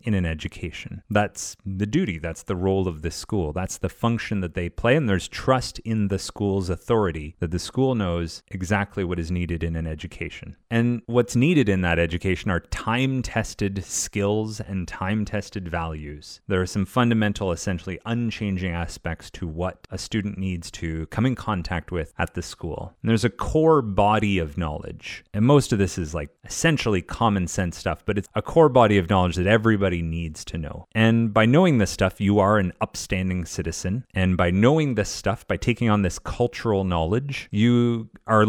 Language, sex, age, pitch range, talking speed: English, male, 30-49, 90-115 Hz, 185 wpm